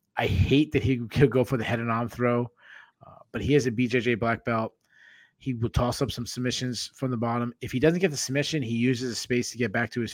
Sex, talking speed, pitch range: male, 260 wpm, 105-125 Hz